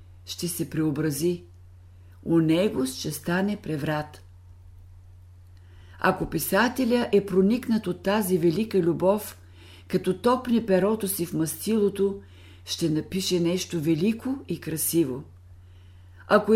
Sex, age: female, 50-69